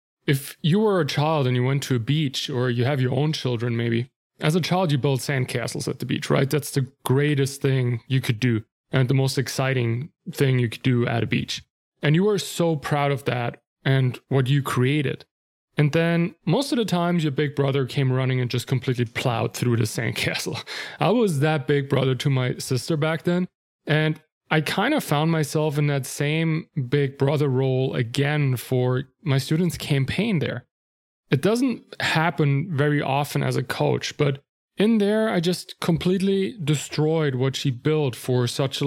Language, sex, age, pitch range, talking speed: English, male, 30-49, 130-155 Hz, 190 wpm